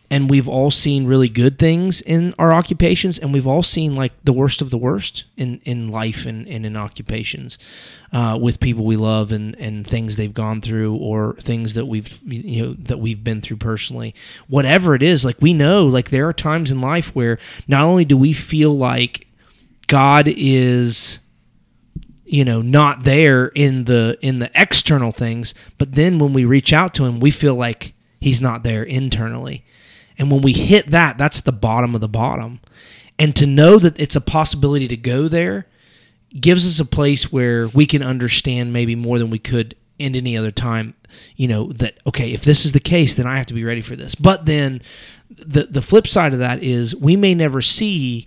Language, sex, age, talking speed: English, male, 30-49, 205 wpm